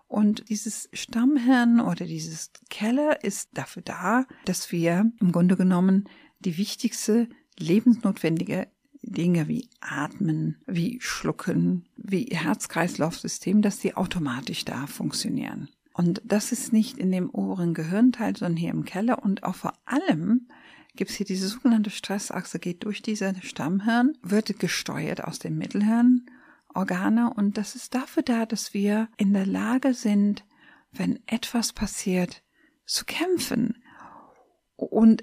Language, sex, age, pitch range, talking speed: German, female, 50-69, 180-240 Hz, 135 wpm